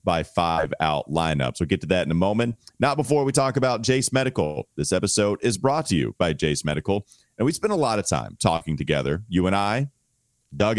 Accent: American